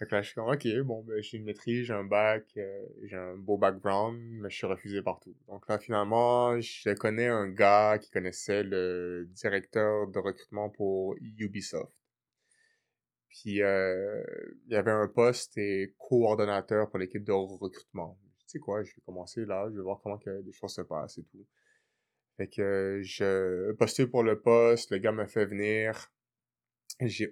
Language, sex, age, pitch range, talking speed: English, male, 20-39, 100-120 Hz, 180 wpm